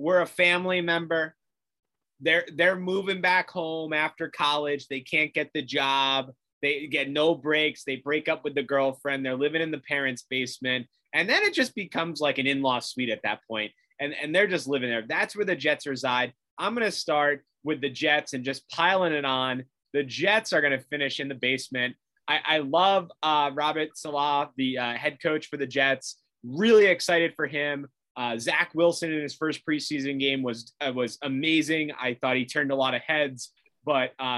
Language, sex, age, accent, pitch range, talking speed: English, male, 30-49, American, 135-175 Hz, 200 wpm